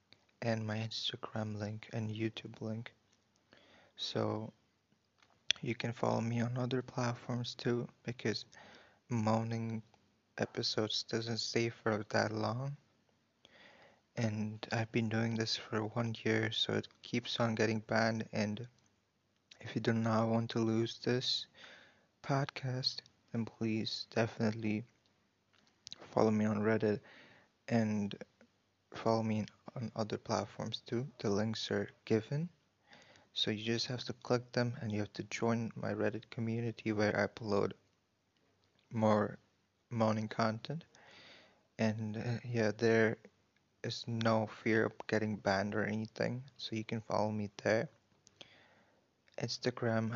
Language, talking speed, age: English, 125 wpm, 20-39